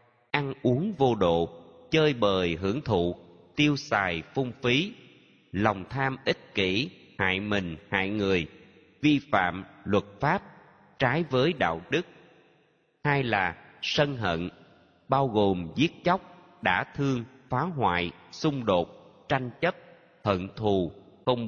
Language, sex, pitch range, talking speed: Vietnamese, male, 100-145 Hz, 130 wpm